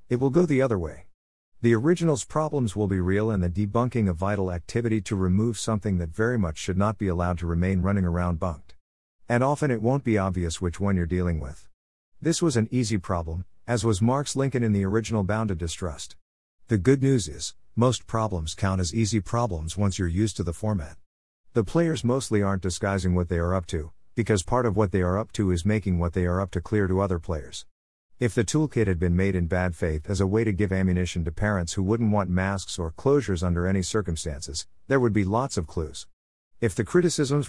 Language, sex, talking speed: English, male, 220 wpm